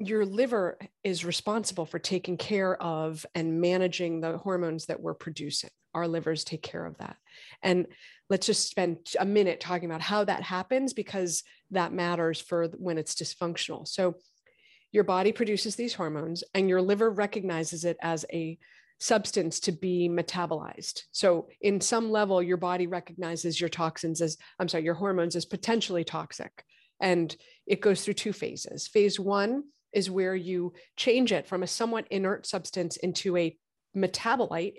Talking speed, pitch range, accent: 160 wpm, 175-215 Hz, American